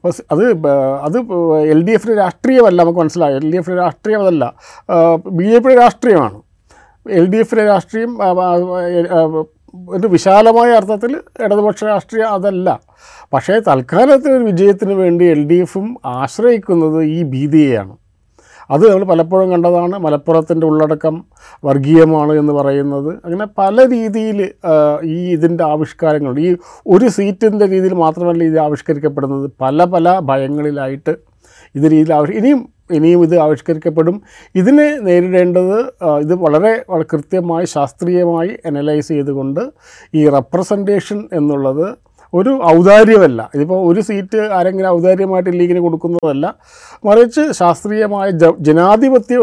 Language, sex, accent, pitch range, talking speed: Malayalam, male, native, 155-205 Hz, 100 wpm